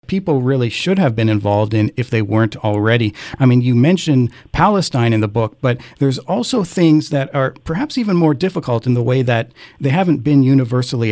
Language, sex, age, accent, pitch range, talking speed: English, male, 40-59, American, 115-140 Hz, 200 wpm